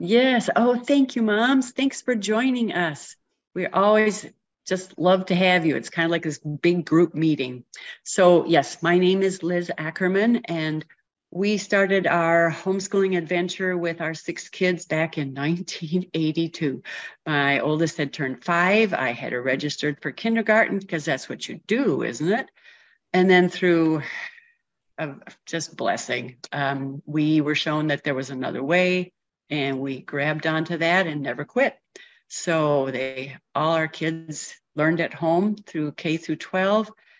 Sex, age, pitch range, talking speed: female, 50-69, 150-185 Hz, 155 wpm